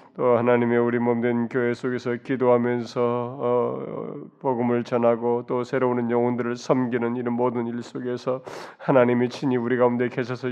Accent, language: native, Korean